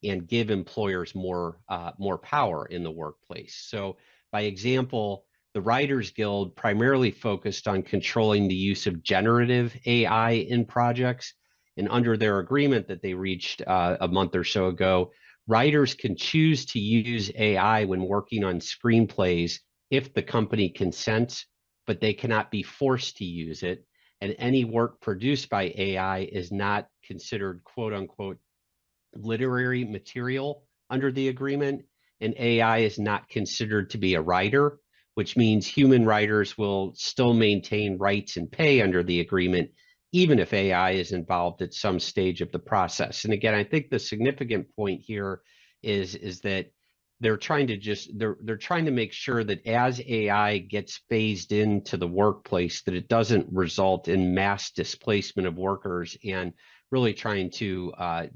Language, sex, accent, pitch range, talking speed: English, male, American, 95-120 Hz, 160 wpm